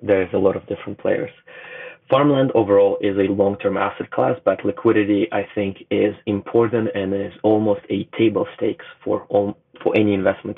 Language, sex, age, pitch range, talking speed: English, male, 30-49, 100-110 Hz, 170 wpm